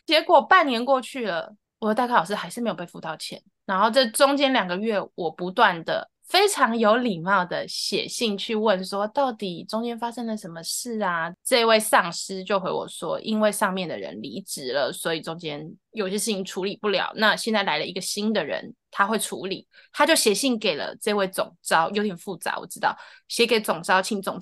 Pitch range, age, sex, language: 190-240 Hz, 20-39, female, Chinese